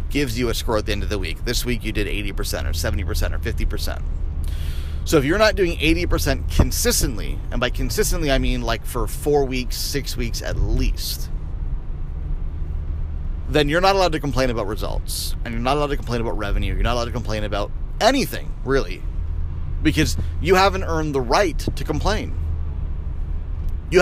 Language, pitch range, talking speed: English, 75-120 Hz, 180 wpm